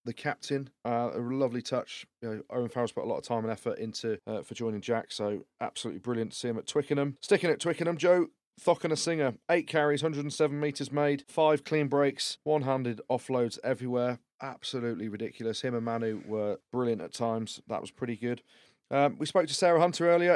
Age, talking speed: 30-49, 205 wpm